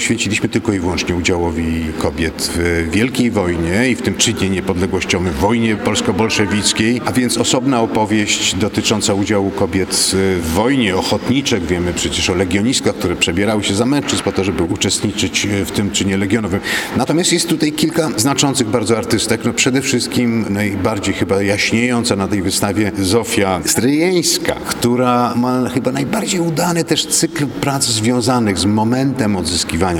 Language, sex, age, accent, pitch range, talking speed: Polish, male, 50-69, native, 95-115 Hz, 145 wpm